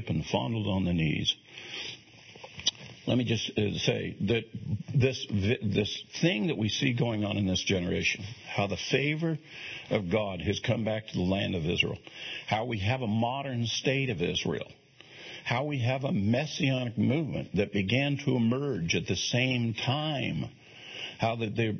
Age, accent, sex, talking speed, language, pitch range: 60-79, American, male, 160 wpm, English, 105-145 Hz